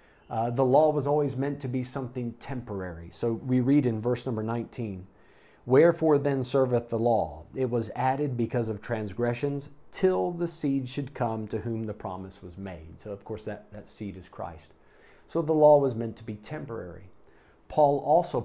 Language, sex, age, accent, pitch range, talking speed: English, male, 40-59, American, 105-140 Hz, 185 wpm